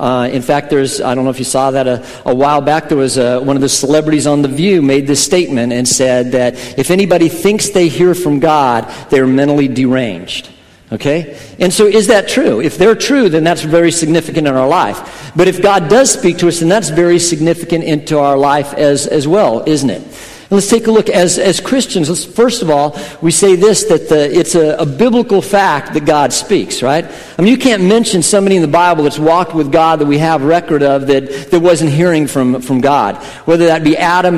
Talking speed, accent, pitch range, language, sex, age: 225 wpm, American, 140-180 Hz, English, male, 50-69